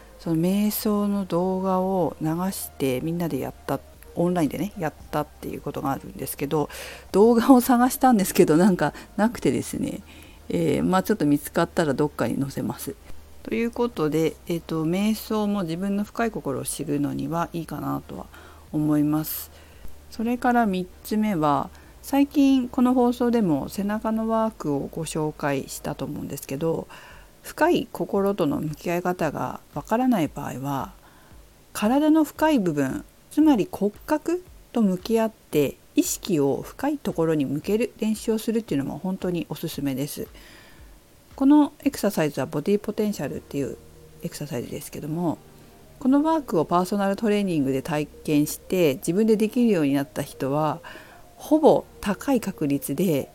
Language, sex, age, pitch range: Japanese, female, 50-69, 150-220 Hz